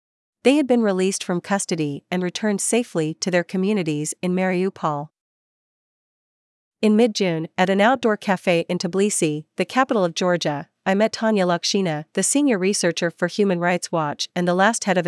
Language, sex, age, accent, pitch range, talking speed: English, female, 40-59, American, 165-200 Hz, 165 wpm